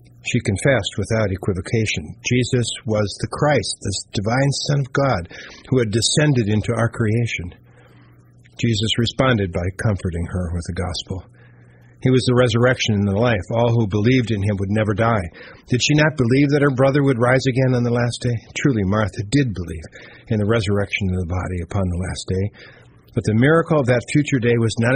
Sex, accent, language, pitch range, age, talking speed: male, American, English, 95-125 Hz, 50-69, 190 wpm